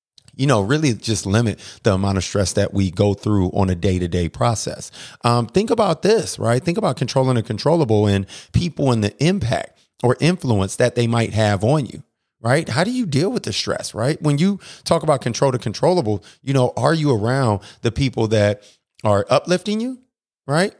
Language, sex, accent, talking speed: English, male, American, 200 wpm